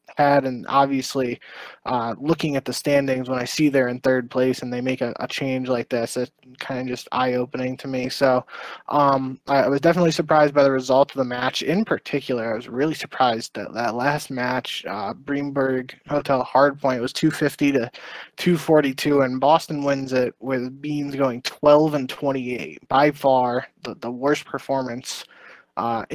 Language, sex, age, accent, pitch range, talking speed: English, male, 20-39, American, 125-145 Hz, 180 wpm